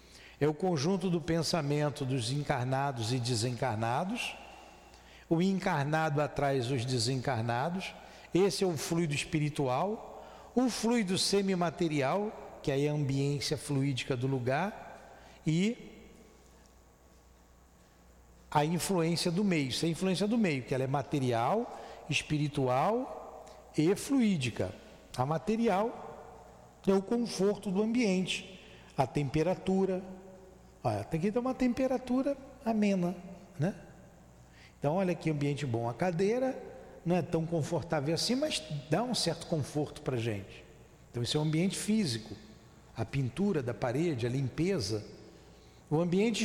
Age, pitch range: 60-79, 140-205 Hz